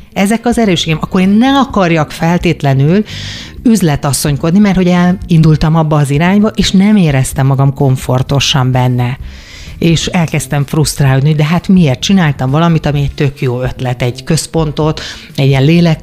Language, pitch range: Hungarian, 135-175 Hz